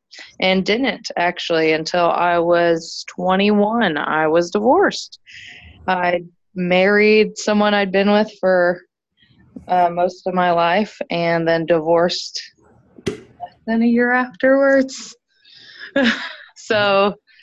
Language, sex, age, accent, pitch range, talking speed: English, female, 20-39, American, 160-200 Hz, 105 wpm